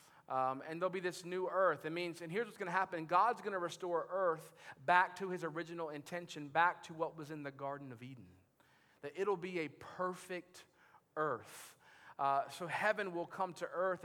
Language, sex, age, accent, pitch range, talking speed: English, male, 40-59, American, 160-200 Hz, 195 wpm